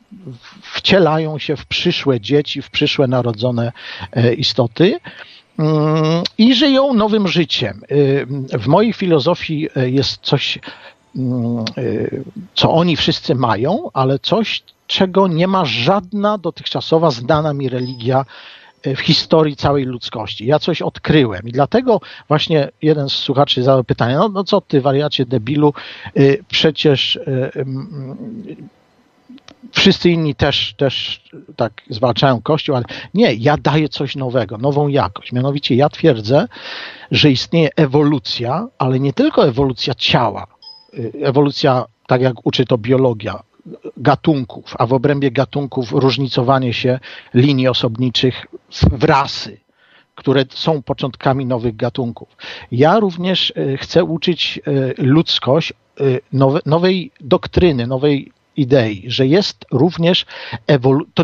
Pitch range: 130-170 Hz